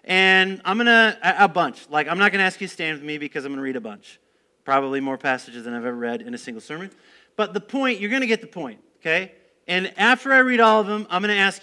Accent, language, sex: American, English, male